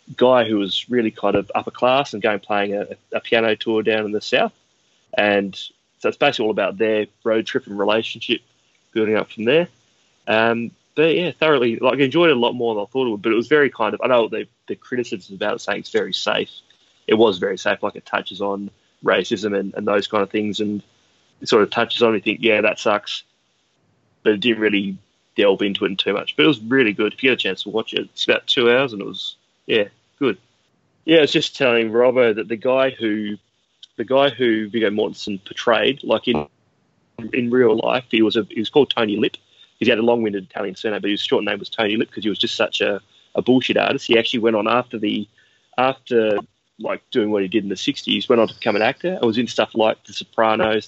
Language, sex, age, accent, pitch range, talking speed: English, male, 20-39, Australian, 105-120 Hz, 240 wpm